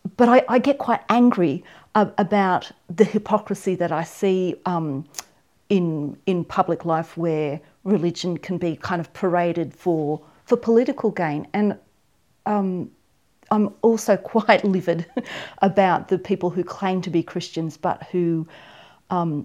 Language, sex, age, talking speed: English, female, 40-59, 140 wpm